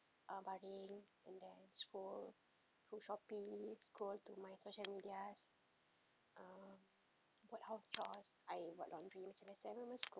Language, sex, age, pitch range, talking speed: Malay, female, 20-39, 195-235 Hz, 140 wpm